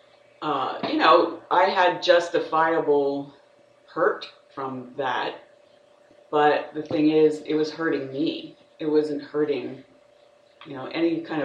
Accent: American